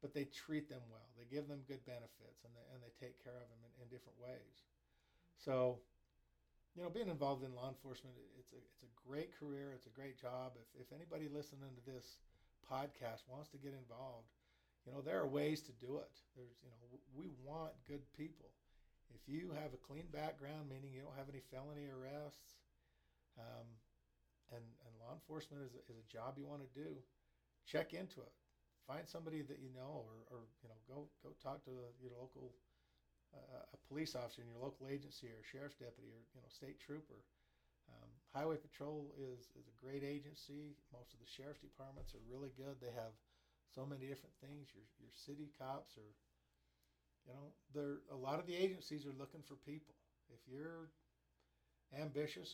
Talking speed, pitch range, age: 190 wpm, 115-145 Hz, 50-69